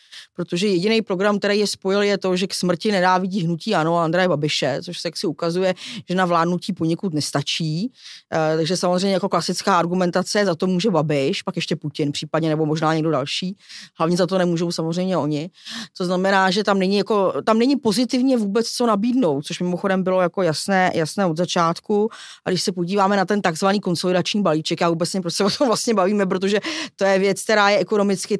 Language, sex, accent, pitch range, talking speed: Czech, female, native, 175-215 Hz, 195 wpm